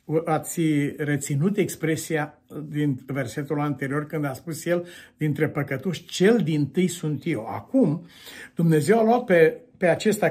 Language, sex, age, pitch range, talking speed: Romanian, male, 60-79, 145-190 Hz, 135 wpm